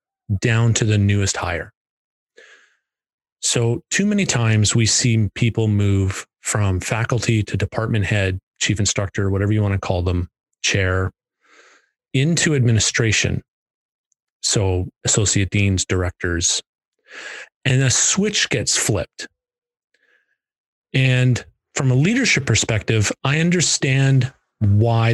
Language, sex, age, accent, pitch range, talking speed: English, male, 30-49, American, 100-125 Hz, 110 wpm